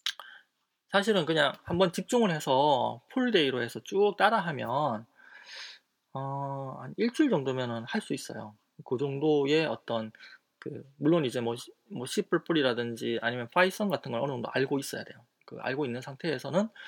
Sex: male